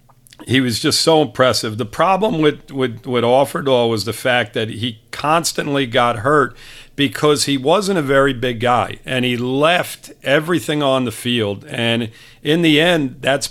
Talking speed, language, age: 165 wpm, English, 50-69